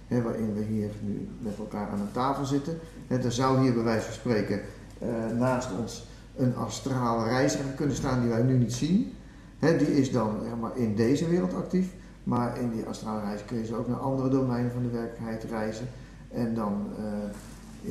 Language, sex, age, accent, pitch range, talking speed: Dutch, male, 50-69, Dutch, 110-140 Hz, 200 wpm